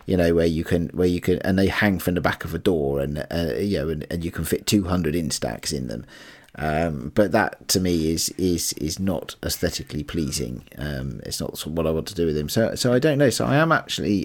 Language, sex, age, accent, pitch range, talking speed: English, male, 40-59, British, 90-115 Hz, 255 wpm